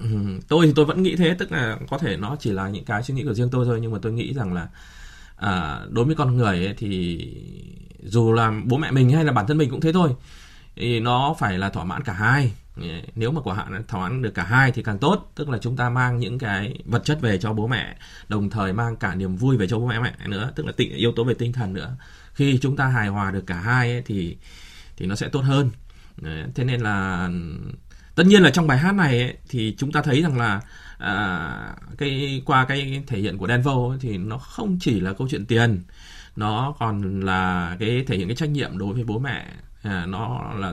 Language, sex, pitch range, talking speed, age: Vietnamese, male, 100-140 Hz, 240 wpm, 20-39